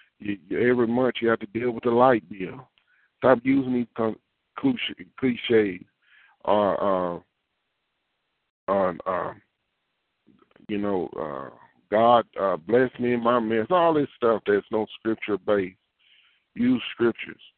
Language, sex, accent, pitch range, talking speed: English, male, American, 105-125 Hz, 135 wpm